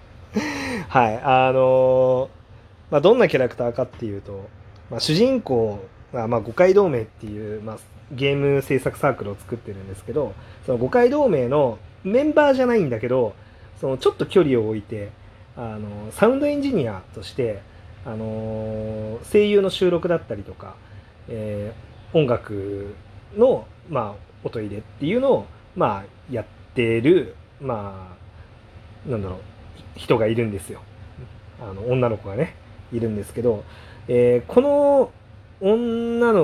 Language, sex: Japanese, male